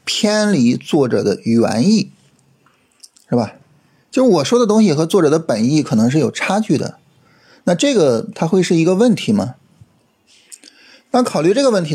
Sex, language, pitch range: male, Chinese, 135-200 Hz